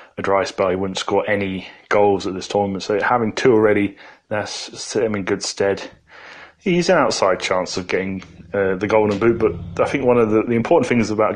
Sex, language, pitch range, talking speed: male, English, 100-115 Hz, 215 wpm